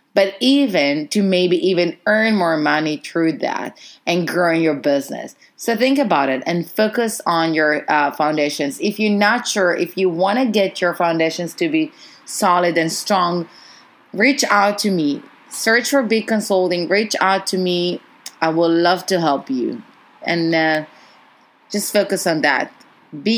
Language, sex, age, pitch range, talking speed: English, female, 30-49, 165-235 Hz, 165 wpm